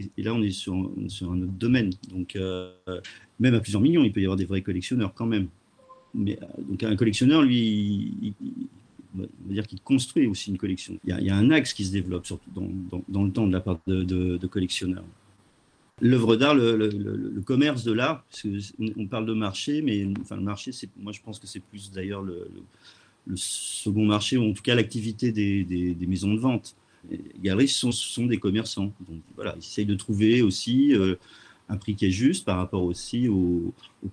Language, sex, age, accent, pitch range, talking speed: French, male, 40-59, French, 95-115 Hz, 225 wpm